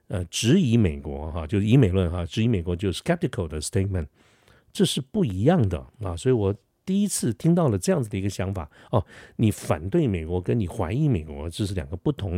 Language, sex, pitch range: Chinese, male, 90-130 Hz